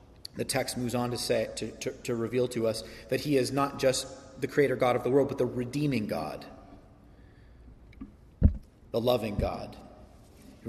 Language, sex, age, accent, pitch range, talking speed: English, male, 30-49, American, 125-150 Hz, 175 wpm